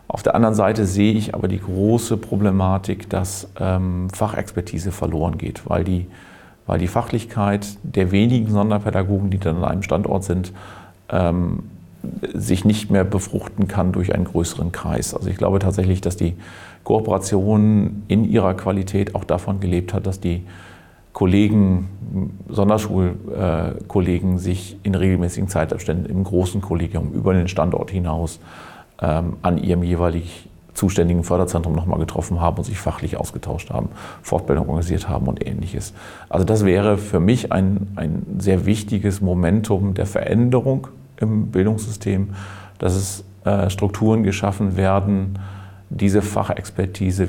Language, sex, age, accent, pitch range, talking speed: German, male, 40-59, German, 90-100 Hz, 135 wpm